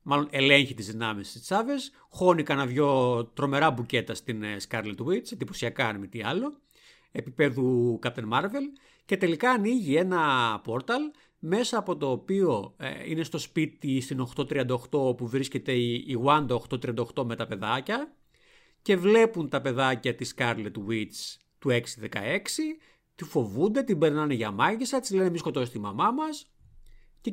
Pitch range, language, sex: 120-200 Hz, Greek, male